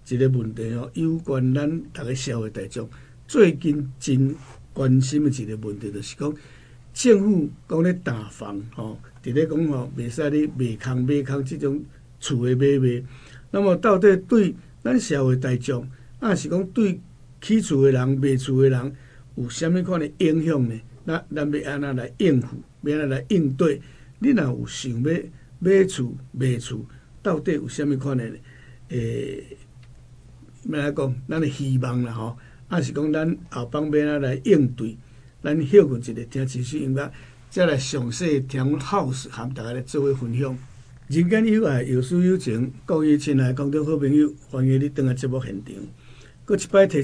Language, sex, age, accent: Chinese, male, 60-79, American